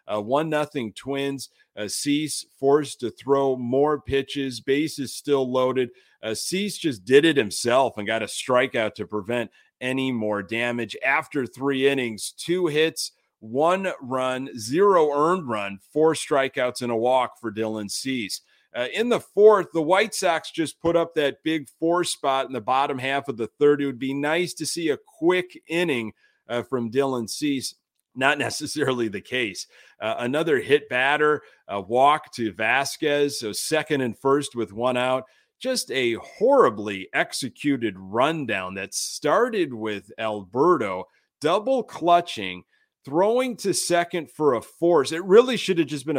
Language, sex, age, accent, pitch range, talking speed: English, male, 40-59, American, 120-170 Hz, 160 wpm